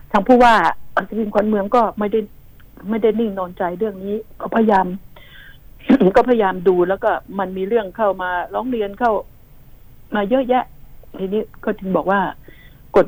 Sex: female